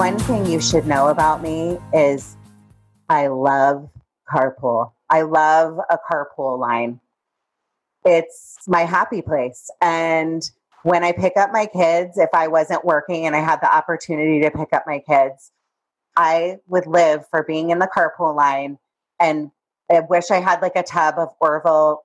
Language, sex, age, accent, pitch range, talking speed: English, female, 30-49, American, 150-170 Hz, 165 wpm